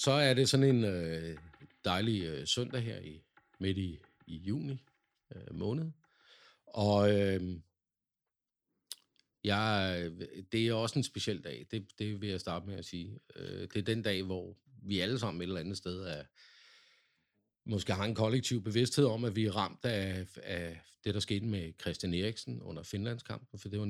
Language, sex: Danish, male